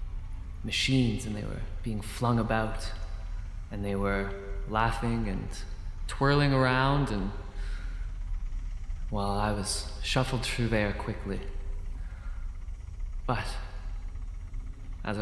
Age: 20-39